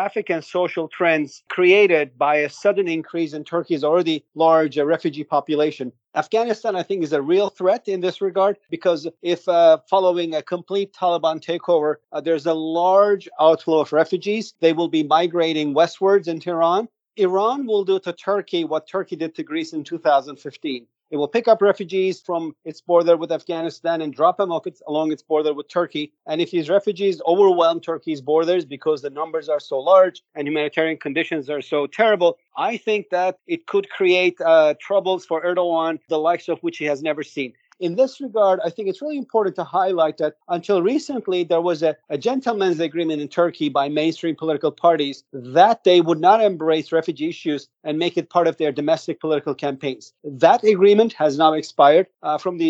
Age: 40-59